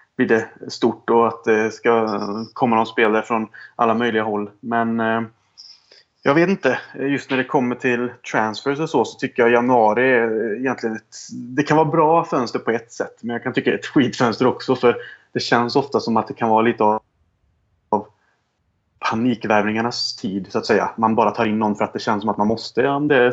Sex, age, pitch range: male, 20-39, 105-120 Hz